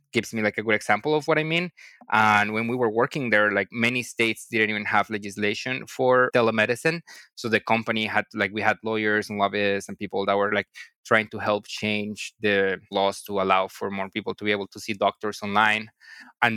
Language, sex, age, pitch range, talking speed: English, male, 20-39, 105-120 Hz, 215 wpm